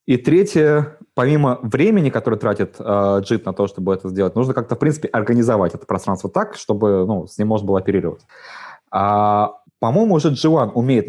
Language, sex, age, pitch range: Russian, male, 20-39, 95-120 Hz